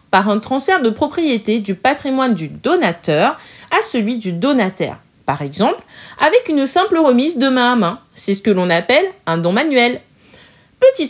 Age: 30-49